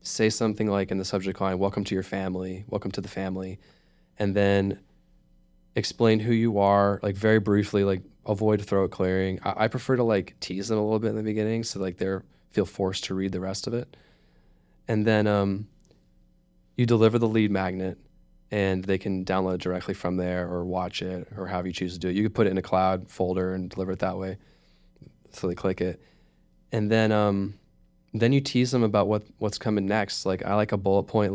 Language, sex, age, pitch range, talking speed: English, male, 20-39, 90-105 Hz, 215 wpm